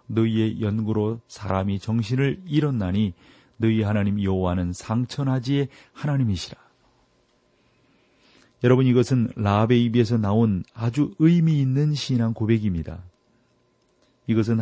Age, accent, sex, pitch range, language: 40-59, native, male, 110-130 Hz, Korean